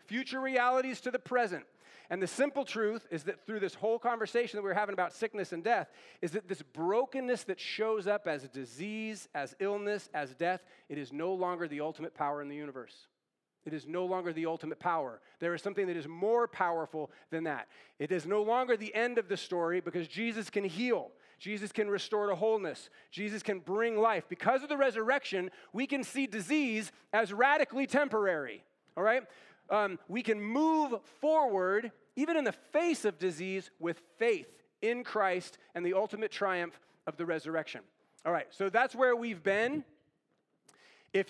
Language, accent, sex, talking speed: English, American, male, 185 wpm